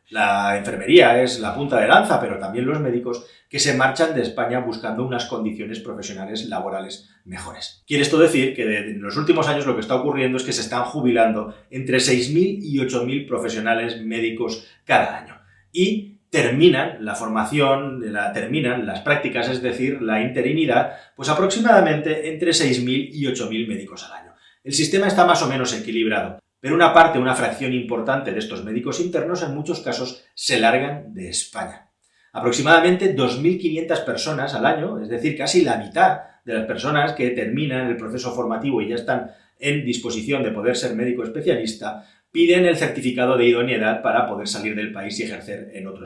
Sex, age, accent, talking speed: male, 30-49, Spanish, 175 wpm